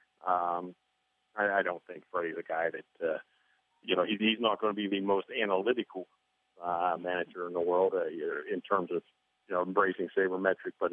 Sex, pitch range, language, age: male, 90-105 Hz, English, 40-59